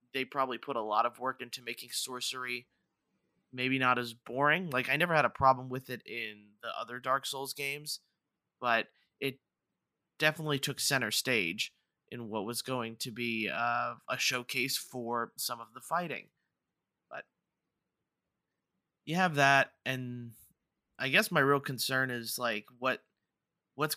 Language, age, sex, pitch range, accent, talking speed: English, 30-49, male, 120-140 Hz, American, 155 wpm